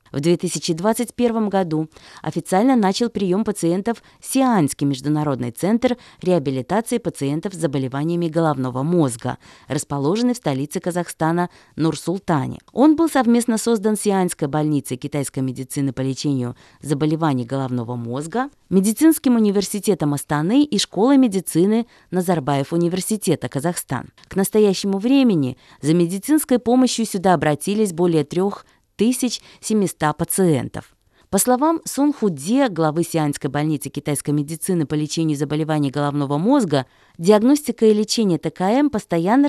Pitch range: 150-215 Hz